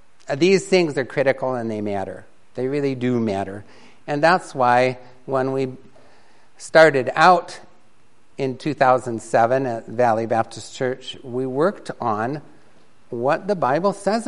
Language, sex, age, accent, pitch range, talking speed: English, male, 60-79, American, 120-160 Hz, 130 wpm